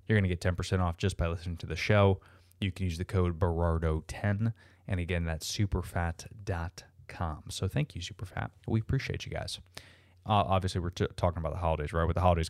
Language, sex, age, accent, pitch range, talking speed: English, male, 20-39, American, 90-100 Hz, 200 wpm